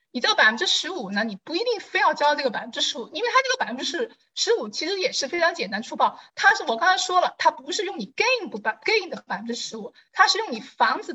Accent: native